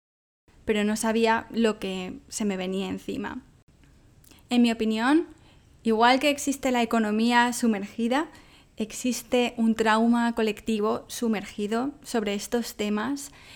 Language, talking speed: English, 115 wpm